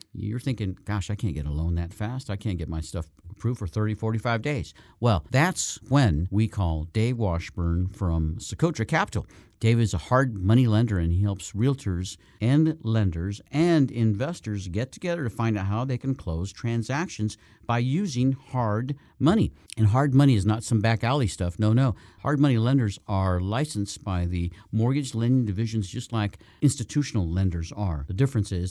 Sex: male